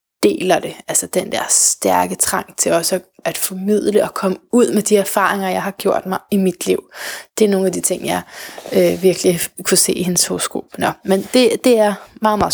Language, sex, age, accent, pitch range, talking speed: Danish, female, 20-39, native, 185-220 Hz, 215 wpm